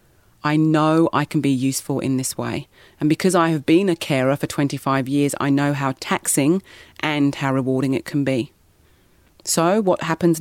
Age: 30-49